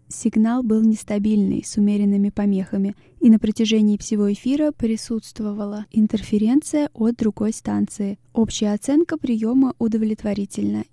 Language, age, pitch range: Russian, 20-39, 200-235 Hz